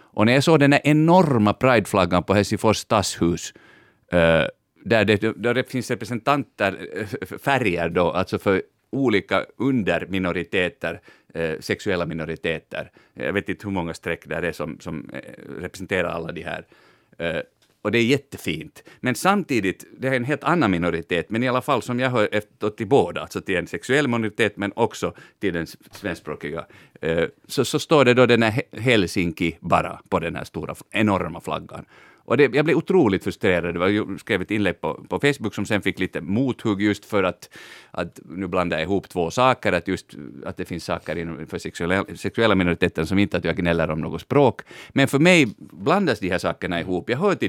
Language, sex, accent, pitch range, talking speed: Swedish, male, Finnish, 85-125 Hz, 180 wpm